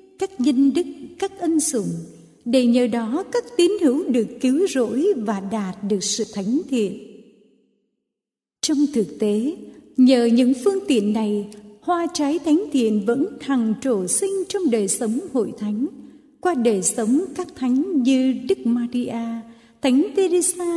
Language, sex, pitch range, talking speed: Vietnamese, female, 230-295 Hz, 150 wpm